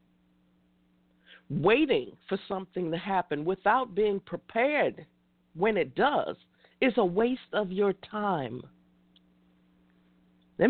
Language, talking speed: English, 100 wpm